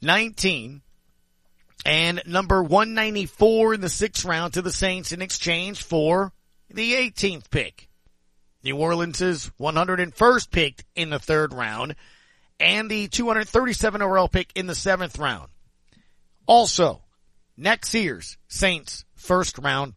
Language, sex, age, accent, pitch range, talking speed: English, male, 40-59, American, 130-195 Hz, 115 wpm